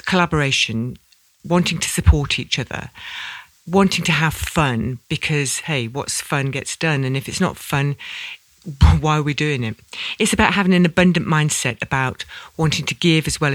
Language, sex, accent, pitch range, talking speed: English, female, British, 130-160 Hz, 170 wpm